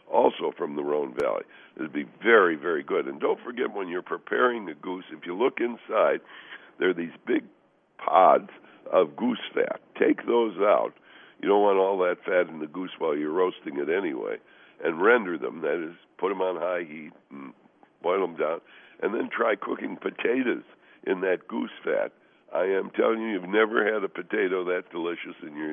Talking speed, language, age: 195 wpm, English, 60-79